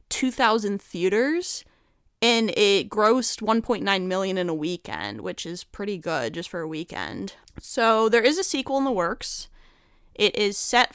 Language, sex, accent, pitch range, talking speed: English, female, American, 180-225 Hz, 160 wpm